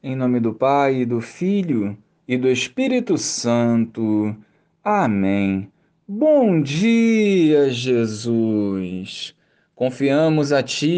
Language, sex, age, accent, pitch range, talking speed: Portuguese, male, 20-39, Brazilian, 125-175 Hz, 95 wpm